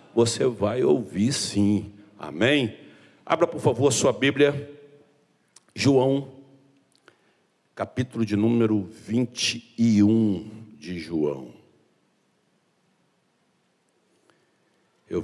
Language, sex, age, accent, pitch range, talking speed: Portuguese, male, 60-79, Brazilian, 100-115 Hz, 70 wpm